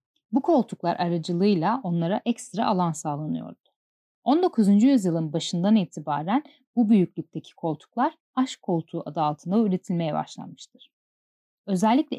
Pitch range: 170-235 Hz